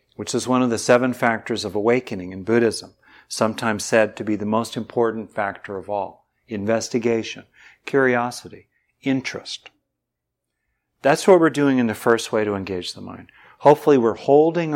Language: English